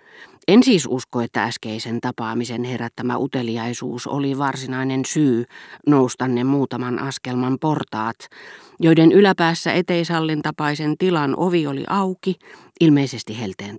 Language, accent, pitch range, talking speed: Finnish, native, 125-165 Hz, 105 wpm